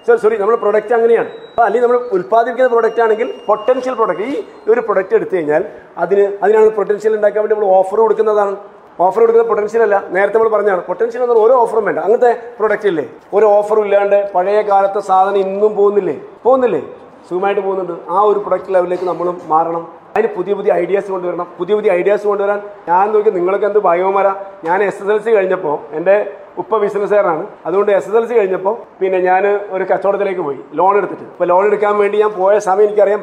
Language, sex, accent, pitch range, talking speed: Malayalam, male, native, 185-230 Hz, 175 wpm